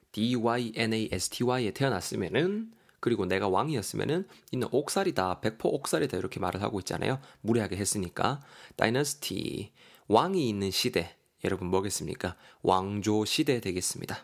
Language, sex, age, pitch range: Korean, male, 20-39, 100-145 Hz